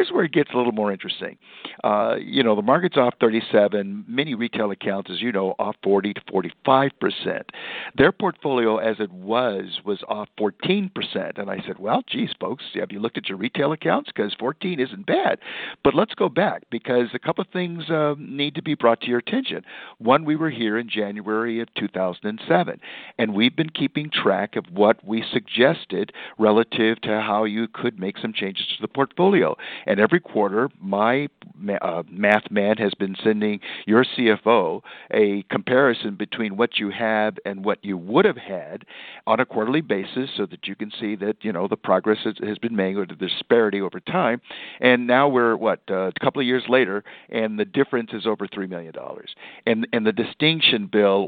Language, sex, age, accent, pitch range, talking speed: English, male, 50-69, American, 100-125 Hz, 195 wpm